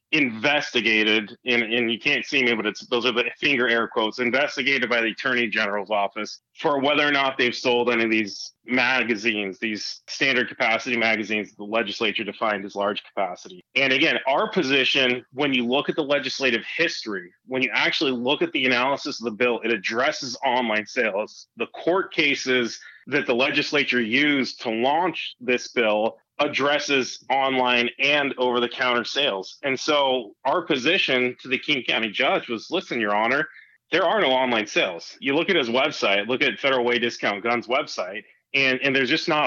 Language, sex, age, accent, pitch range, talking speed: English, male, 30-49, American, 115-140 Hz, 175 wpm